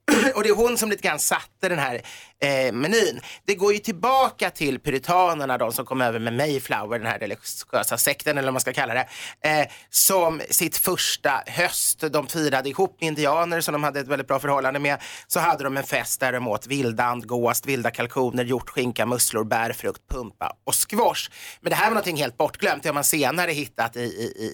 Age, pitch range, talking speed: 30-49, 130-165 Hz, 210 wpm